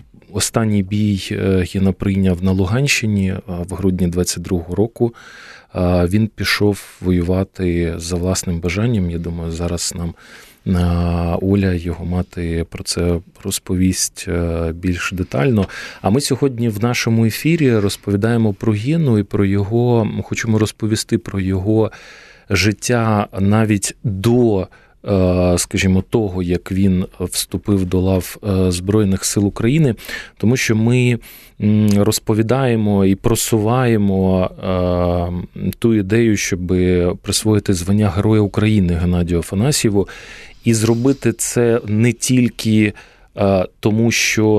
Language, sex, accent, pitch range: Ukrainian, male, native, 90-110 Hz